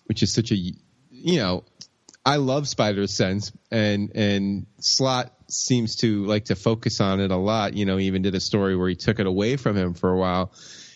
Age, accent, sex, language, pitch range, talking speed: 20-39, American, male, English, 100-125 Hz, 210 wpm